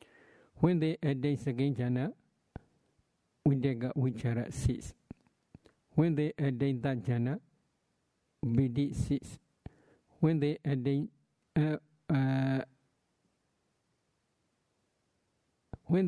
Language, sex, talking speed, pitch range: English, male, 65 wpm, 125-145 Hz